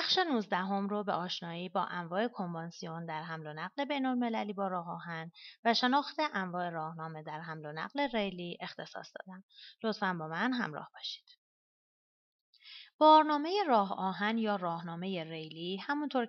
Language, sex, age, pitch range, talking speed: Persian, female, 30-49, 170-235 Hz, 145 wpm